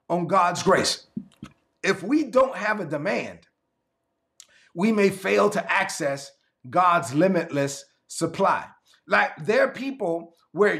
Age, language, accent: 30-49, English, American